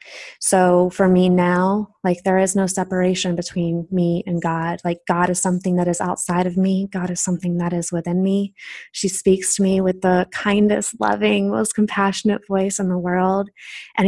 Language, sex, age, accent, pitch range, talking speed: English, female, 20-39, American, 185-215 Hz, 190 wpm